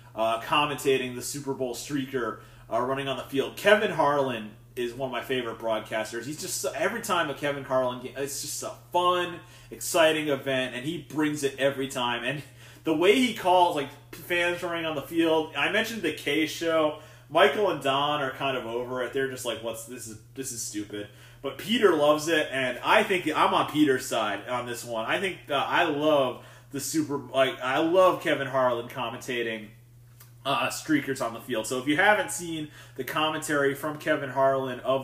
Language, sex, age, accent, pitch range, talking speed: English, male, 30-49, American, 120-150 Hz, 195 wpm